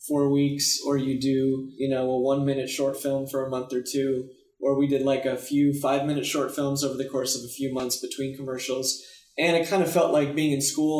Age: 20-39